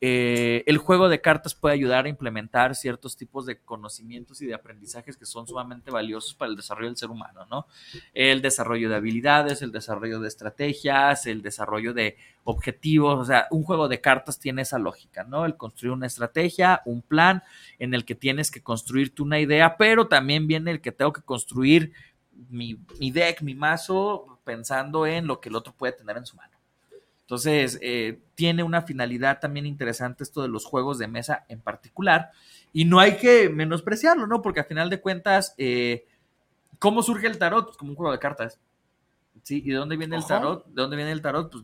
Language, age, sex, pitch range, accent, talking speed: Spanish, 30-49, male, 120-160 Hz, Mexican, 200 wpm